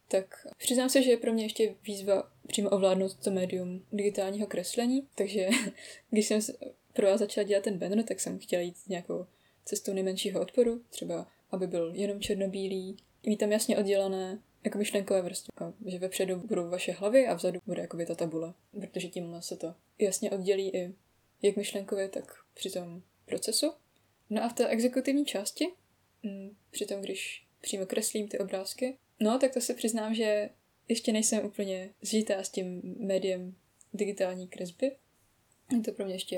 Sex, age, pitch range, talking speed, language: female, 20-39, 185-220 Hz, 170 wpm, Czech